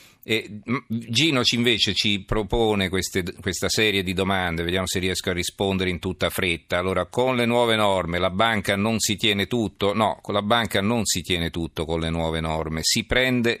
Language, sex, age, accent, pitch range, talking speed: Italian, male, 50-69, native, 85-100 Hz, 185 wpm